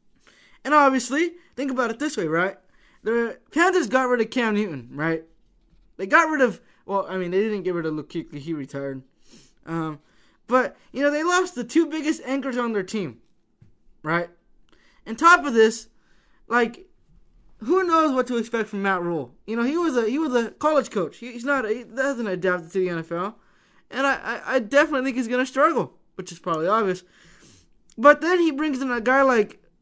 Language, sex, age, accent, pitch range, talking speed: English, male, 20-39, American, 180-265 Hz, 200 wpm